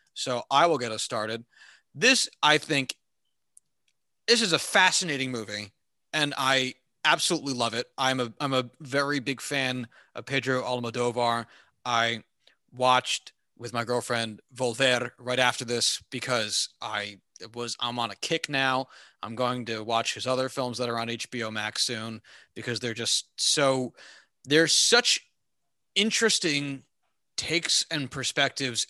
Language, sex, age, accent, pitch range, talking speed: English, male, 30-49, American, 120-160 Hz, 145 wpm